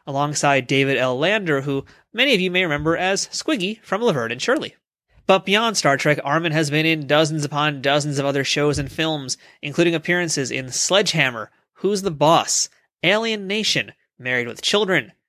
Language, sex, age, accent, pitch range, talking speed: English, male, 30-49, American, 140-190 Hz, 175 wpm